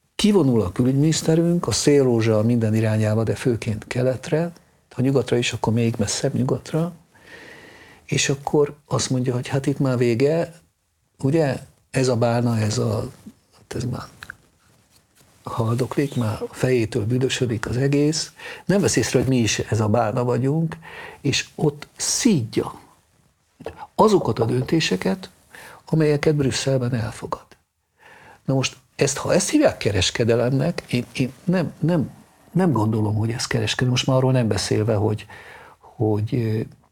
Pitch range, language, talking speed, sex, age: 110-135 Hz, Hungarian, 140 wpm, male, 60-79